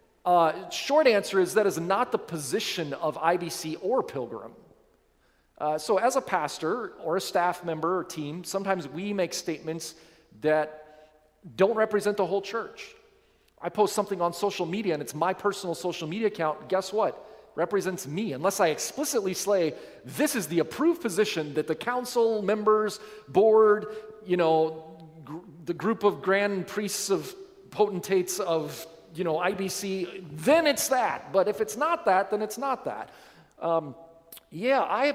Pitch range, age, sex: 160-215 Hz, 40-59, male